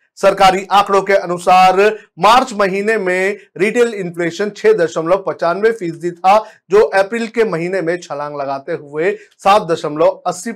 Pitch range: 160-200 Hz